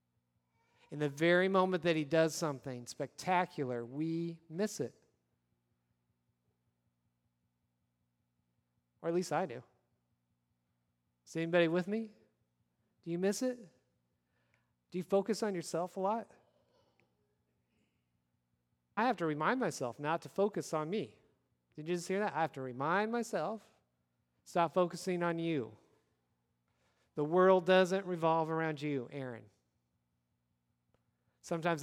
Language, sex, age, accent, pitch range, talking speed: English, male, 40-59, American, 115-180 Hz, 120 wpm